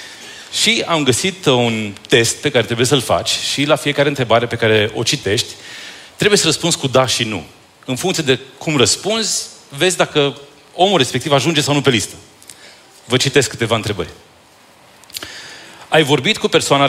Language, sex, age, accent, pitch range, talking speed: Romanian, male, 30-49, native, 110-150 Hz, 165 wpm